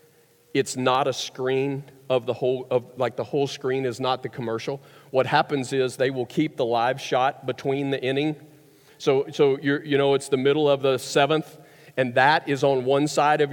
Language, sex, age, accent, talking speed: English, male, 40-59, American, 205 wpm